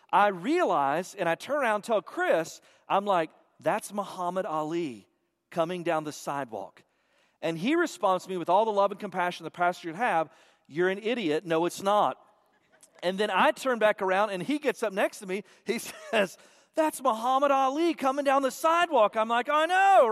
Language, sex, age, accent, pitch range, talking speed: English, male, 40-59, American, 180-240 Hz, 195 wpm